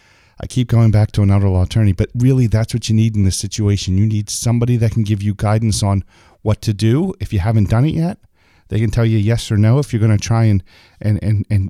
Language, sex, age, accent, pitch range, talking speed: English, male, 40-59, American, 100-115 Hz, 260 wpm